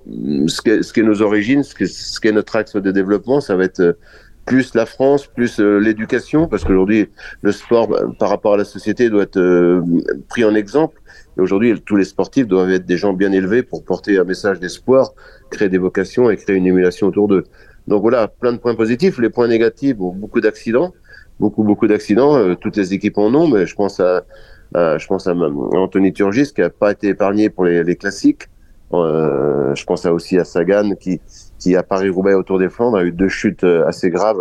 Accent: French